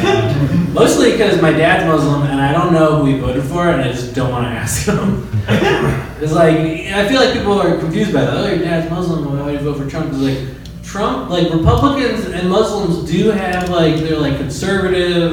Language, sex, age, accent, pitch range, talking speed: English, male, 20-39, American, 135-180 Hz, 210 wpm